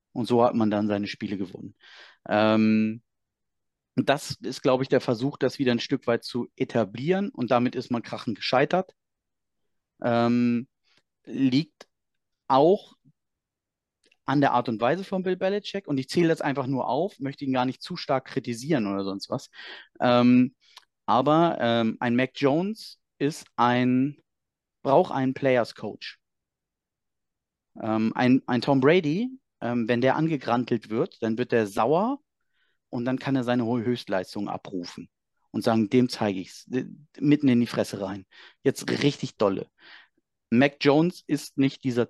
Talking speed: 155 wpm